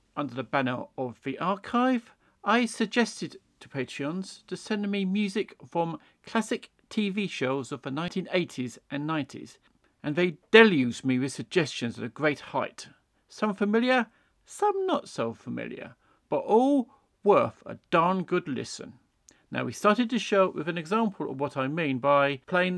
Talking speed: 160 wpm